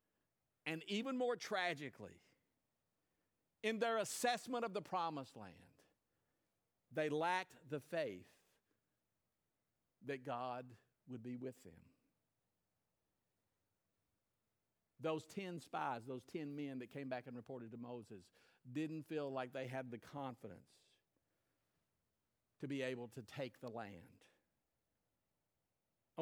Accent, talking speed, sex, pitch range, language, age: American, 110 wpm, male, 125-180 Hz, English, 50-69